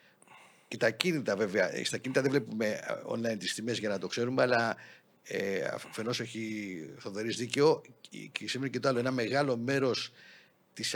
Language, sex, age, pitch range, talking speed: Greek, male, 50-69, 115-140 Hz, 170 wpm